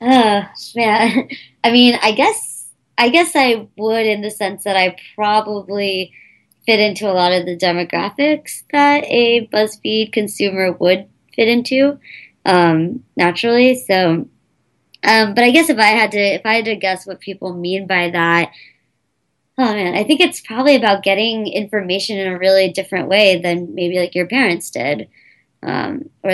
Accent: American